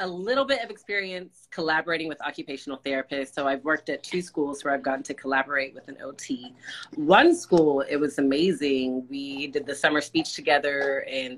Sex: female